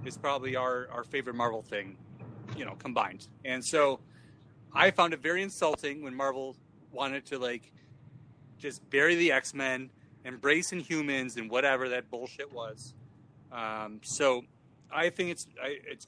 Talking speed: 145 wpm